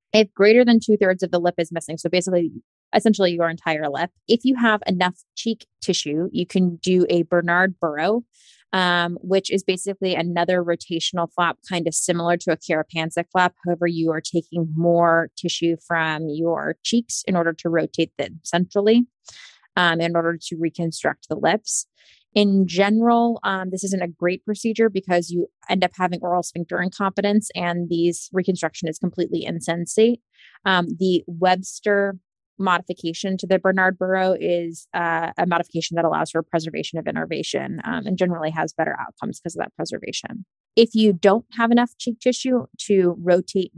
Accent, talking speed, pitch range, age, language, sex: American, 170 wpm, 170-190 Hz, 20-39, English, female